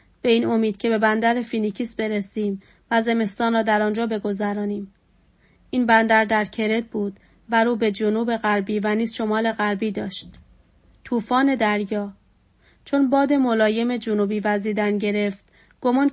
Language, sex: Persian, female